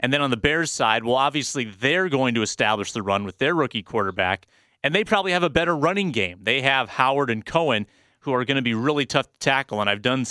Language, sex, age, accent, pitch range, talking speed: English, male, 30-49, American, 120-155 Hz, 250 wpm